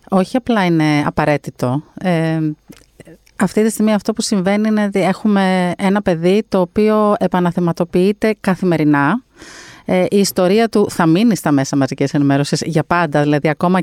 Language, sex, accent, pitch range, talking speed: Greek, female, native, 160-210 Hz, 150 wpm